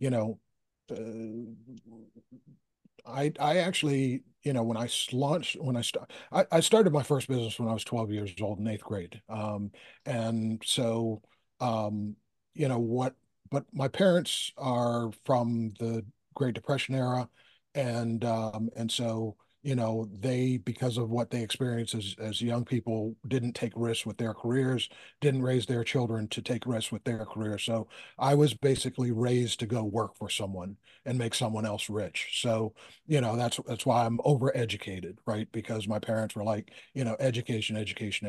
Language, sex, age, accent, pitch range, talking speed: English, male, 50-69, American, 110-130 Hz, 170 wpm